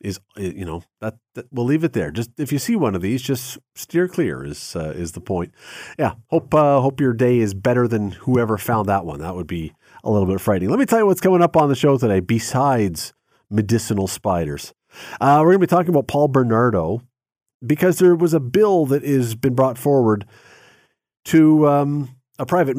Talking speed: 215 wpm